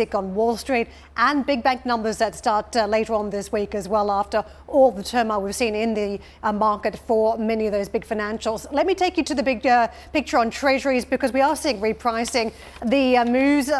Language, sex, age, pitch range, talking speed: English, female, 40-59, 220-255 Hz, 220 wpm